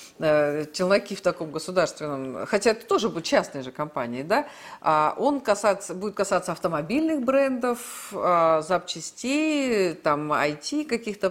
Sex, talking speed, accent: female, 115 wpm, native